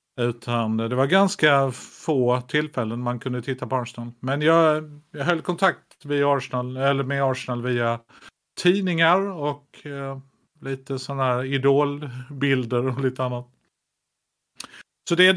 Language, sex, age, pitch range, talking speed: English, male, 50-69, 115-145 Hz, 135 wpm